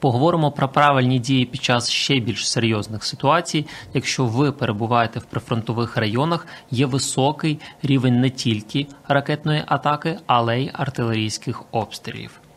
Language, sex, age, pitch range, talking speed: Ukrainian, male, 20-39, 120-150 Hz, 130 wpm